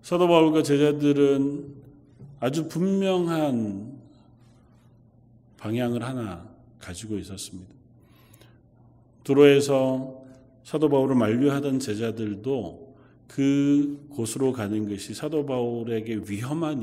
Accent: native